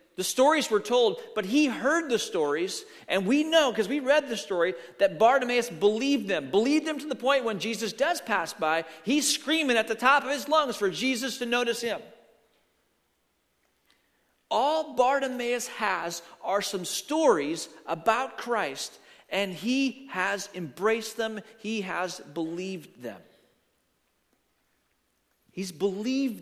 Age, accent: 40-59, American